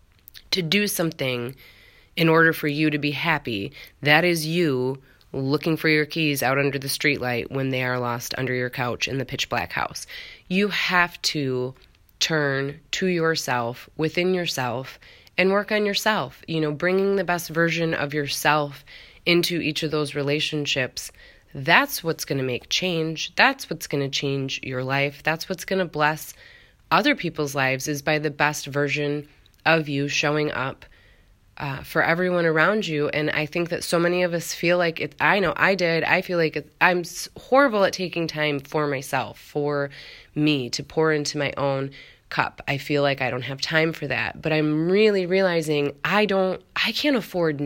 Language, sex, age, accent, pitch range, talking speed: English, female, 20-39, American, 135-170 Hz, 180 wpm